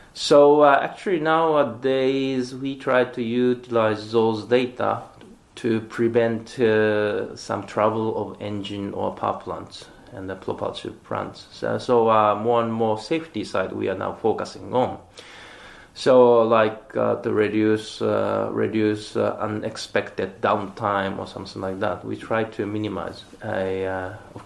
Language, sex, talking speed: English, male, 140 wpm